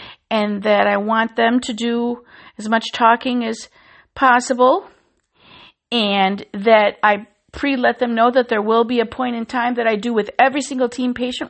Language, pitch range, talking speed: English, 210-260 Hz, 175 wpm